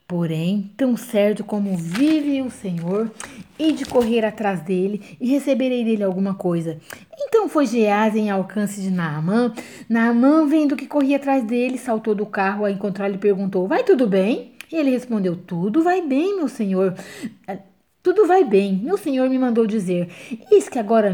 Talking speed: 170 wpm